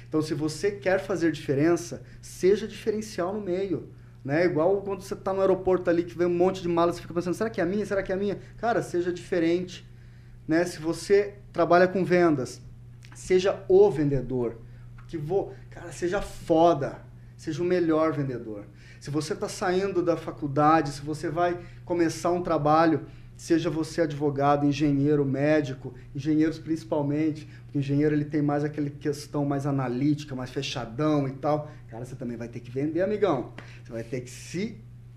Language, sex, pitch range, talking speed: Portuguese, male, 125-175 Hz, 175 wpm